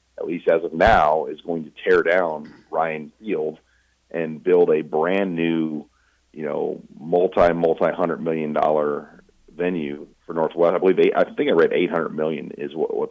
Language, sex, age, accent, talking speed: English, male, 40-59, American, 180 wpm